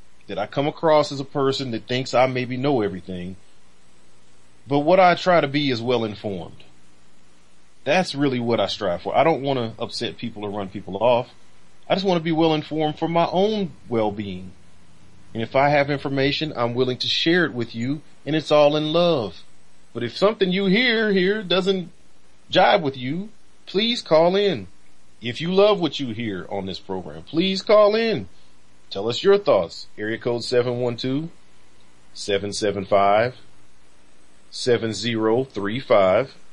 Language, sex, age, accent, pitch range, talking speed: English, male, 40-59, American, 90-150 Hz, 160 wpm